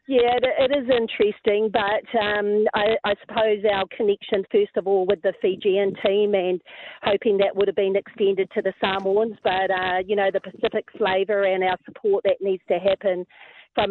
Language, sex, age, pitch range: English, female, 40-59, 195-220 Hz